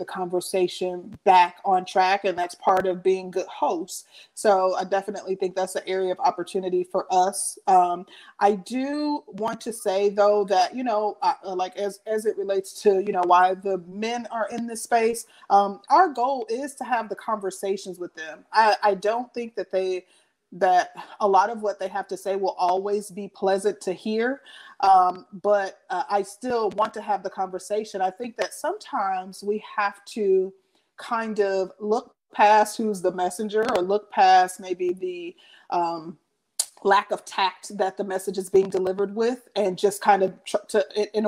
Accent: American